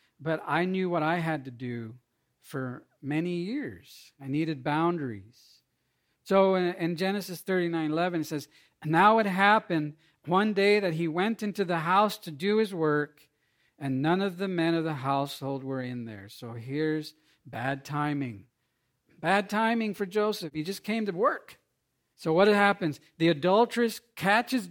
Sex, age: male, 50-69